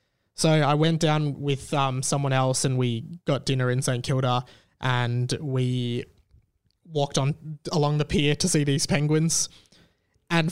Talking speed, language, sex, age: 155 wpm, English, male, 20-39